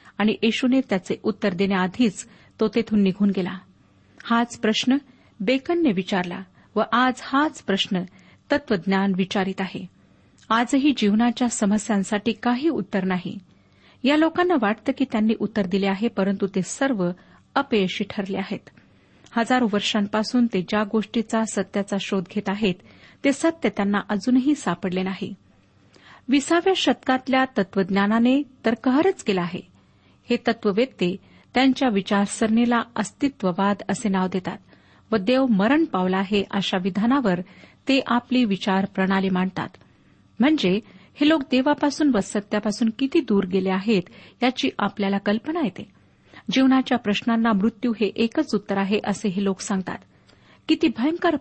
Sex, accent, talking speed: female, native, 115 wpm